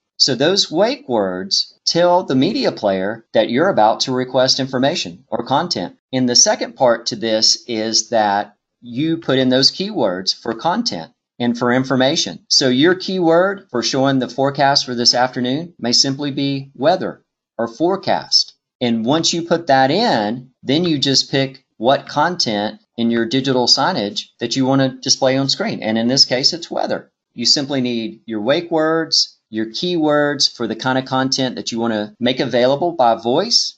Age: 40-59